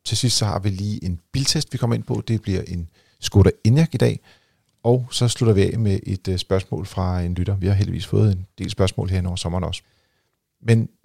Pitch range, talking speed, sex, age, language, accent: 95-120 Hz, 230 wpm, male, 40-59, Danish, native